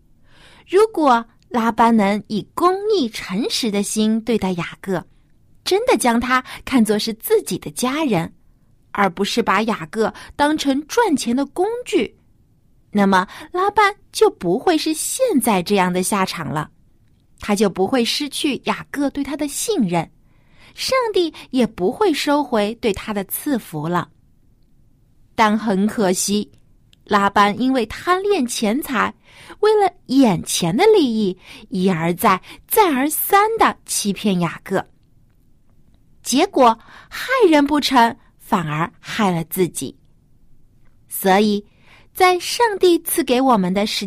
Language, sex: Chinese, female